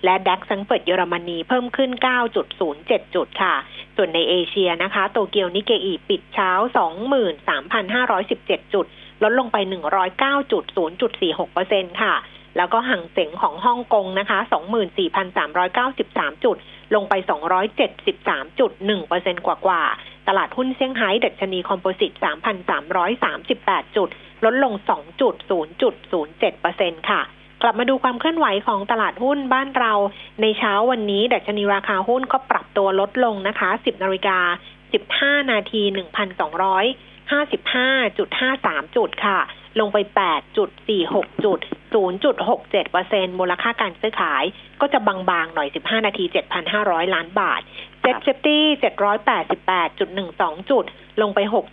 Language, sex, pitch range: Thai, female, 190-250 Hz